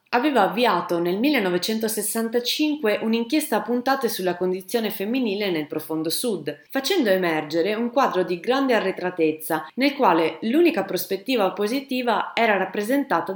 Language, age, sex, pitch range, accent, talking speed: Italian, 30-49, female, 160-240 Hz, native, 120 wpm